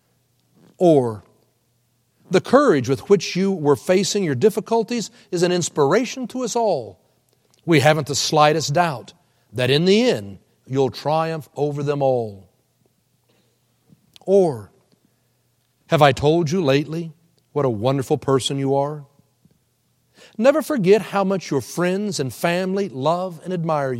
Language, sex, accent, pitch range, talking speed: English, male, American, 135-195 Hz, 135 wpm